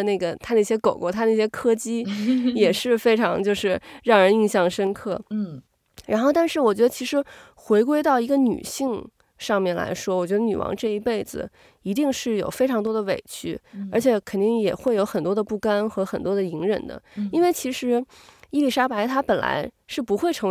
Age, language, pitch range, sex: 20-39, Chinese, 200-250 Hz, female